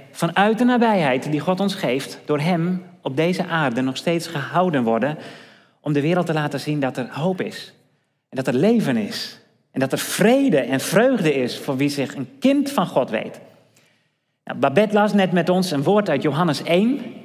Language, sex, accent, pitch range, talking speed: Dutch, male, Dutch, 145-210 Hz, 200 wpm